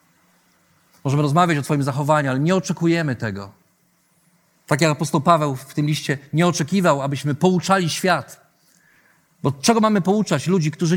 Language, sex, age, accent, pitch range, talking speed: Polish, male, 40-59, native, 150-190 Hz, 150 wpm